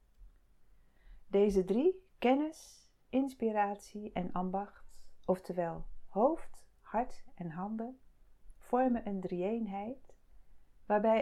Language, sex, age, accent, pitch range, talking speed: Dutch, female, 40-59, Dutch, 180-230 Hz, 80 wpm